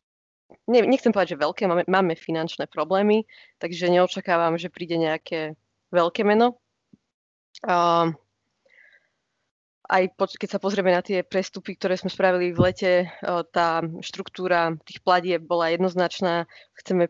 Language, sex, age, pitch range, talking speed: Slovak, female, 20-39, 170-190 Hz, 135 wpm